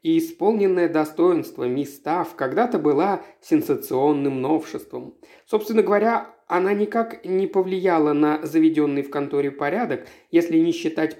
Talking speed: 120 wpm